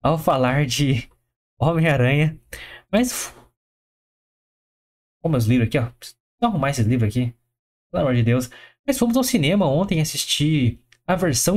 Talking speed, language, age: 135 wpm, Portuguese, 20-39